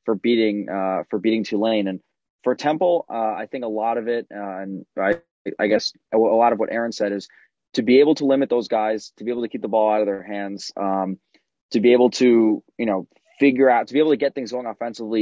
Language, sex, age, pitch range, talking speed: English, male, 20-39, 100-120 Hz, 250 wpm